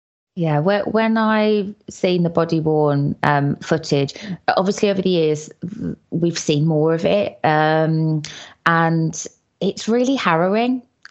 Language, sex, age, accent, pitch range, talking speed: English, female, 20-39, British, 155-185 Hz, 125 wpm